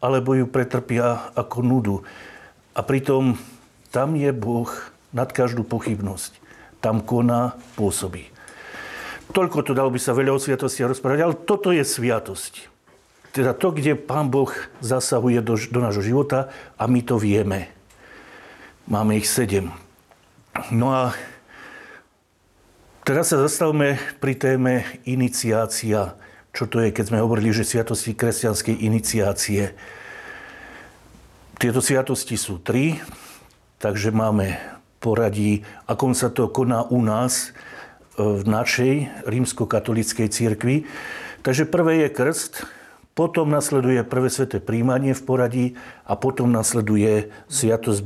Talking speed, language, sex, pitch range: 120 wpm, Slovak, male, 110-130 Hz